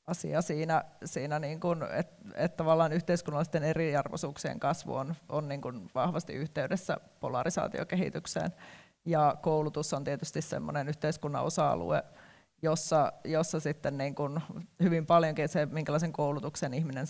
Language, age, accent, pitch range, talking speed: Finnish, 30-49, native, 150-175 Hz, 125 wpm